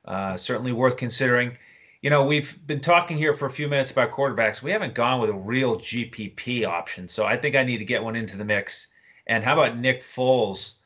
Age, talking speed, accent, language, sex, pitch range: 30-49, 220 wpm, American, English, male, 110-135 Hz